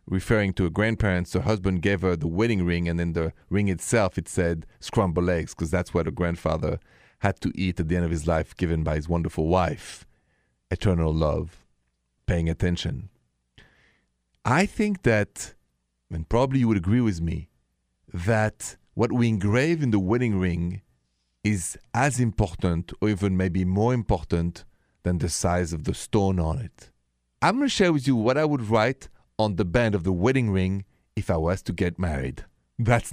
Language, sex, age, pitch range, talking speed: English, male, 40-59, 85-110 Hz, 185 wpm